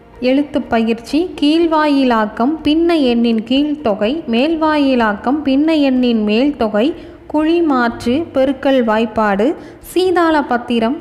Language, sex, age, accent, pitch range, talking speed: Tamil, female, 20-39, native, 220-290 Hz, 85 wpm